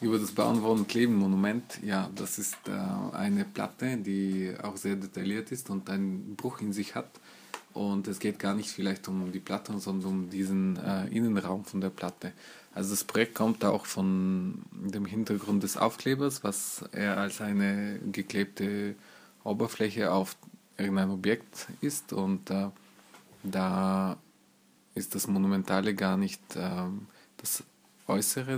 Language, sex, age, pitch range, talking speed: German, male, 20-39, 95-105 Hz, 150 wpm